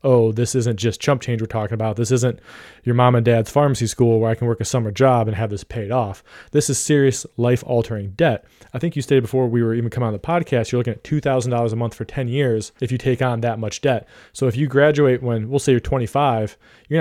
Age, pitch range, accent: 20-39, 110-130 Hz, American